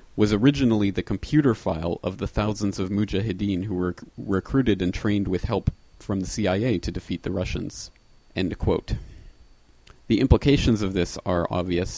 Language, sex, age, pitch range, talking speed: English, male, 30-49, 90-100 Hz, 165 wpm